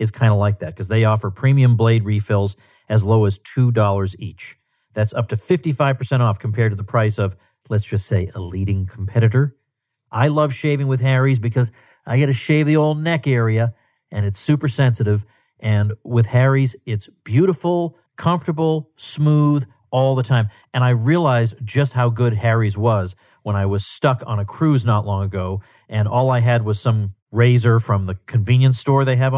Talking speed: 185 wpm